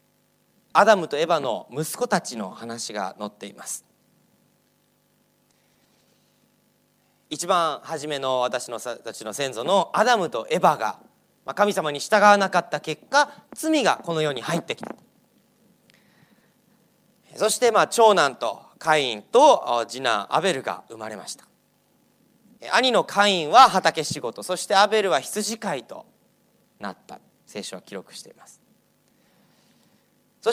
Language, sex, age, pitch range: Japanese, male, 30-49, 165-240 Hz